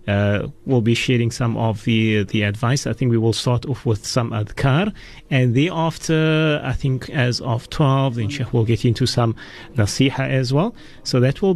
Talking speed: 190 wpm